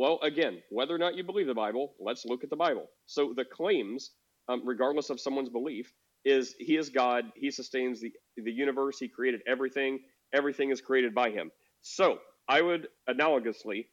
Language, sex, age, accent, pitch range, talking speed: English, male, 40-59, American, 130-160 Hz, 185 wpm